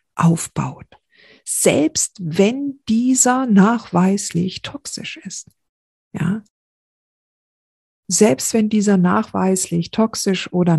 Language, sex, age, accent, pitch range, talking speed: German, female, 50-69, German, 170-235 Hz, 80 wpm